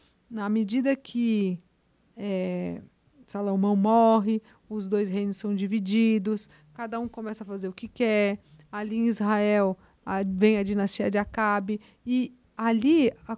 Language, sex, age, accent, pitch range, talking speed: Portuguese, female, 40-59, Brazilian, 205-245 Hz, 130 wpm